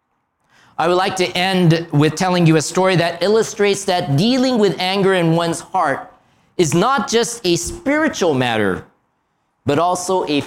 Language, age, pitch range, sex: Japanese, 40-59, 160-205 Hz, male